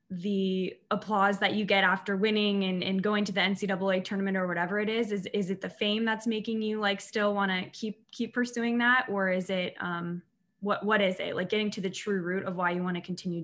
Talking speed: 230 wpm